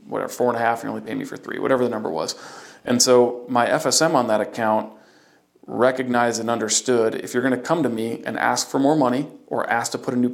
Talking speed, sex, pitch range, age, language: 255 wpm, male, 115-130 Hz, 40-59, English